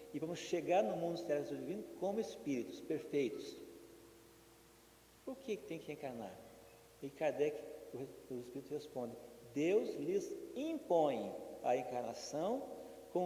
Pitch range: 130-175 Hz